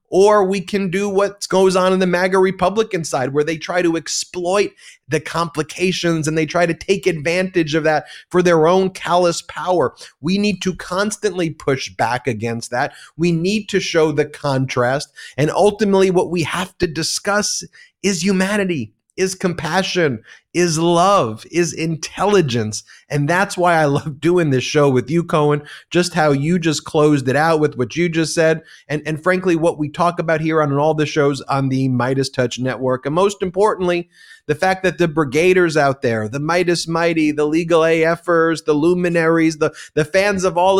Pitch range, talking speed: 150-185 Hz, 180 wpm